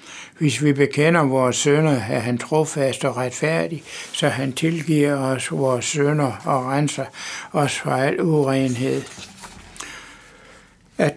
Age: 60-79